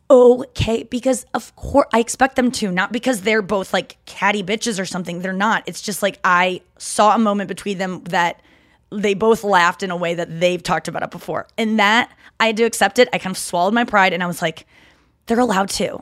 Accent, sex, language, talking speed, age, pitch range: American, female, English, 230 wpm, 20-39, 175-225 Hz